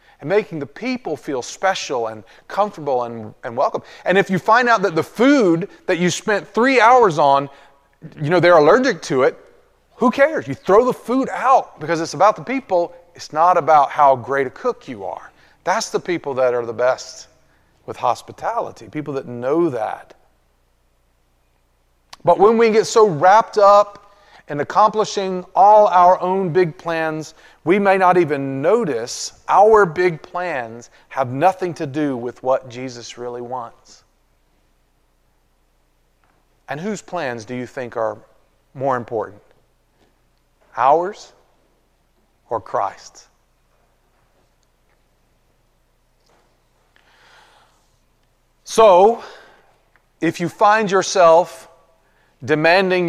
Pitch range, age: 120-185 Hz, 30-49